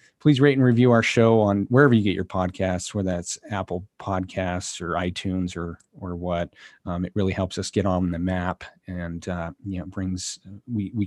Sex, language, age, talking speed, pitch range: male, English, 30-49, 200 wpm, 95-115 Hz